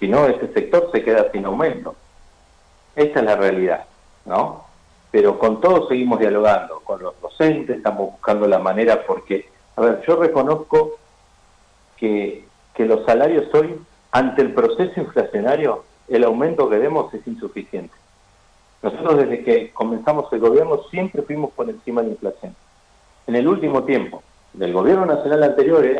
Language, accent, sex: Spanish, Argentinian, male